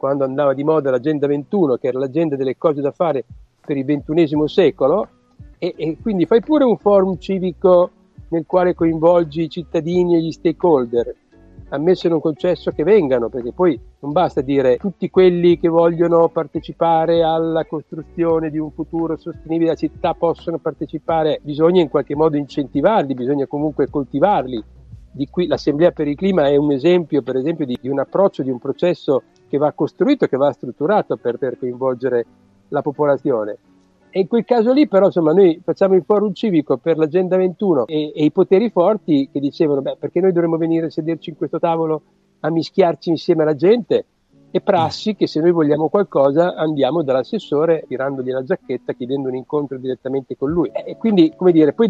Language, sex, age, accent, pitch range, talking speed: Italian, male, 50-69, native, 145-180 Hz, 185 wpm